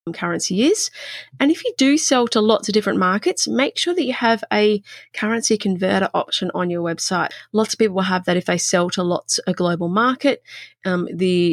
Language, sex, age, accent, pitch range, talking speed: English, female, 30-49, Australian, 175-235 Hz, 210 wpm